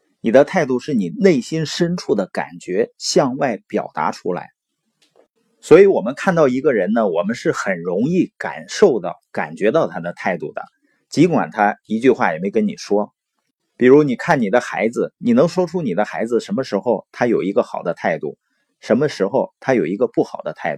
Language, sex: Chinese, male